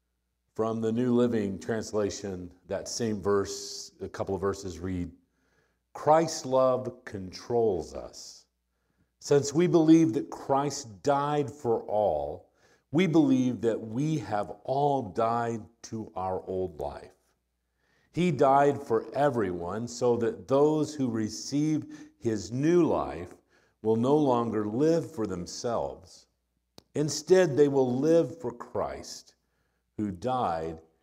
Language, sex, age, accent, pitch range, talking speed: English, male, 50-69, American, 90-130 Hz, 120 wpm